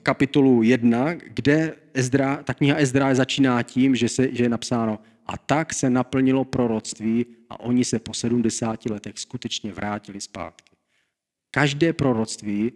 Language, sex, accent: Czech, male, native